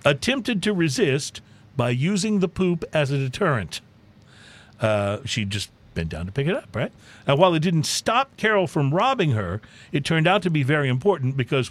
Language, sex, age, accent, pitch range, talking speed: English, male, 50-69, American, 115-175 Hz, 190 wpm